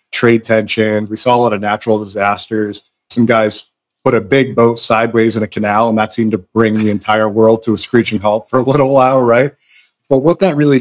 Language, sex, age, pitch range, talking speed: English, male, 30-49, 105-130 Hz, 220 wpm